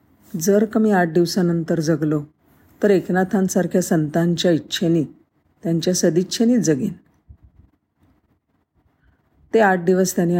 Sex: female